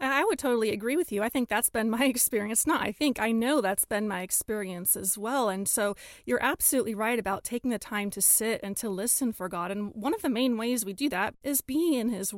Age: 30-49